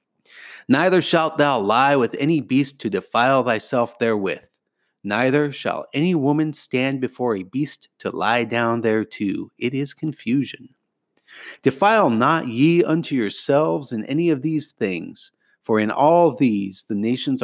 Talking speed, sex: 145 wpm, male